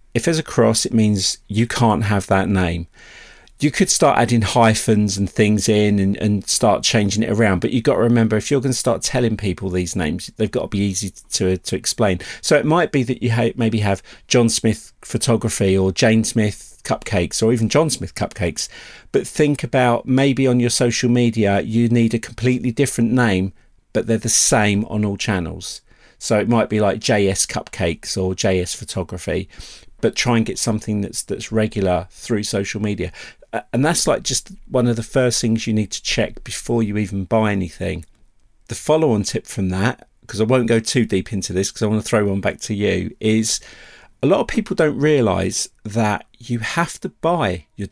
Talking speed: 205 wpm